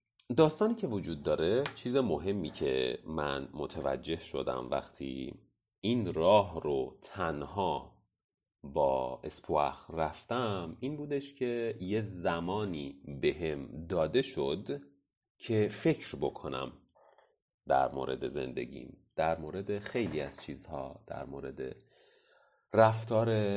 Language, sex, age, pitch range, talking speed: Persian, male, 30-49, 75-110 Hz, 105 wpm